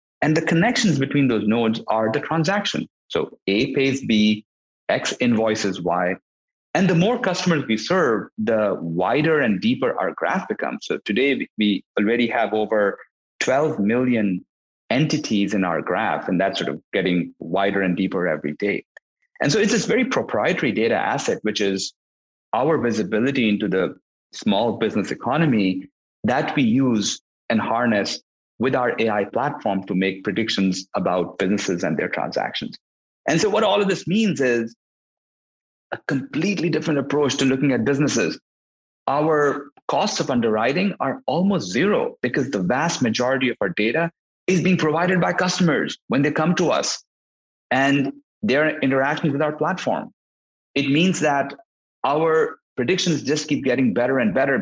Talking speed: 155 wpm